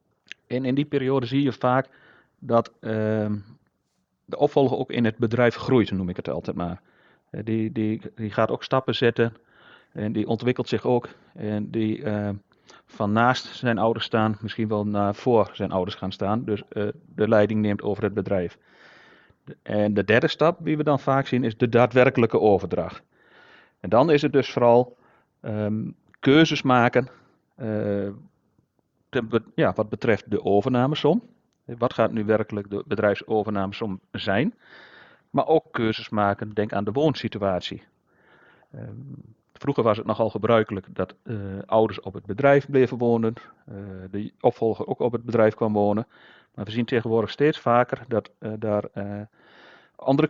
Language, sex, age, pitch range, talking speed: Dutch, male, 40-59, 105-125 Hz, 155 wpm